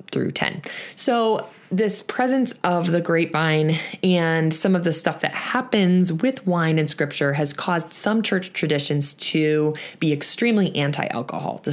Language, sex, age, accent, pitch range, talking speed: English, female, 20-39, American, 155-190 Hz, 150 wpm